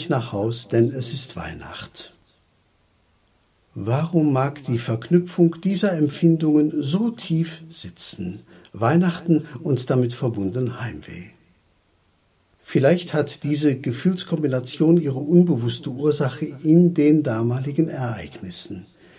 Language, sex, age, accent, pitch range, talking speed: German, male, 60-79, German, 110-150 Hz, 95 wpm